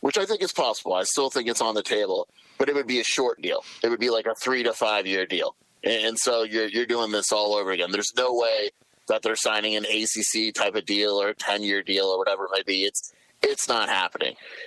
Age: 30-49